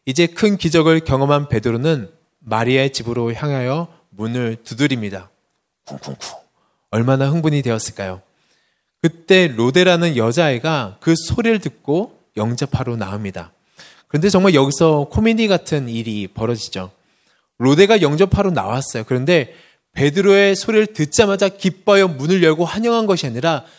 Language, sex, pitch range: Korean, male, 120-185 Hz